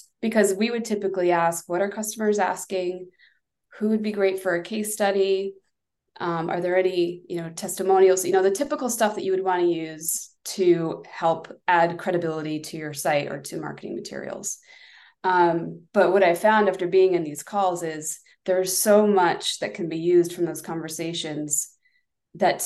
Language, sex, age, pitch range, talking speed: English, female, 20-39, 160-195 Hz, 180 wpm